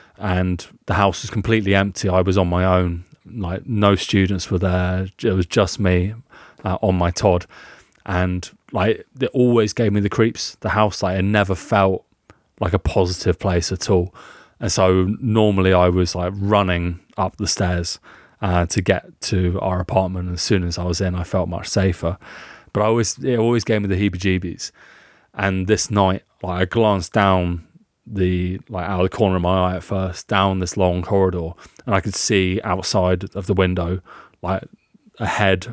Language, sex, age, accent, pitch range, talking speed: English, male, 30-49, British, 90-105 Hz, 190 wpm